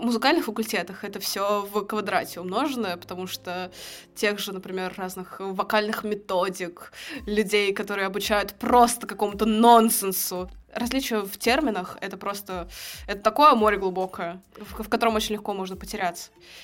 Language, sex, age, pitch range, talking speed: Russian, female, 20-39, 195-230 Hz, 140 wpm